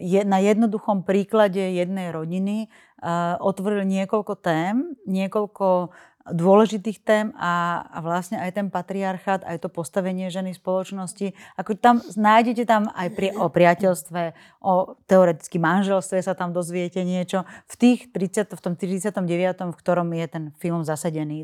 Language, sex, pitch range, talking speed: Slovak, female, 170-195 Hz, 145 wpm